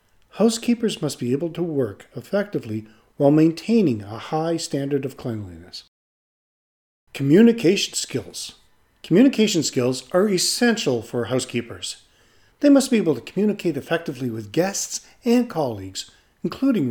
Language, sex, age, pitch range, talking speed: English, male, 40-59, 125-200 Hz, 120 wpm